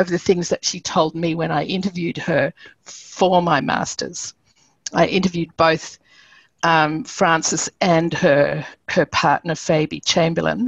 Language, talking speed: English, 140 wpm